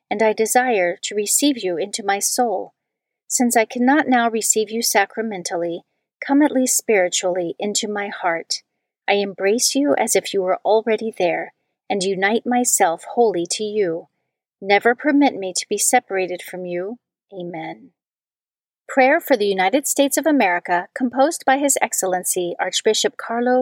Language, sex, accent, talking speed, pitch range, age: English, female, American, 150 wpm, 185-245 Hz, 40-59